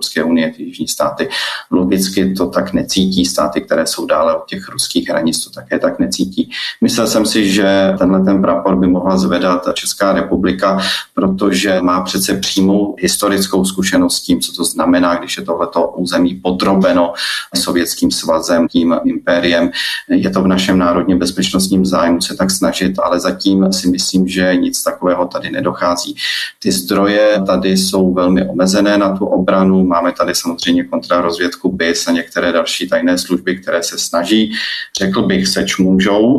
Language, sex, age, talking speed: Czech, male, 30-49, 160 wpm